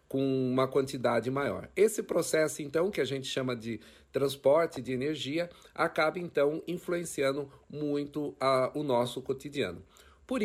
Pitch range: 125-150 Hz